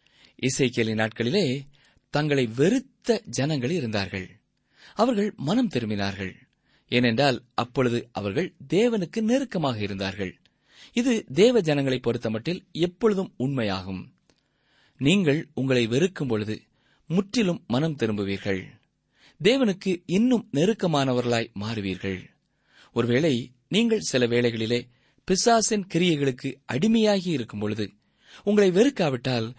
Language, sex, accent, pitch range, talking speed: Tamil, male, native, 115-195 Hz, 85 wpm